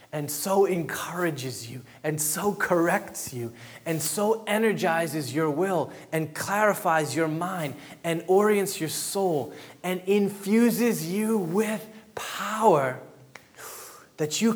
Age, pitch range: 20-39, 135-180 Hz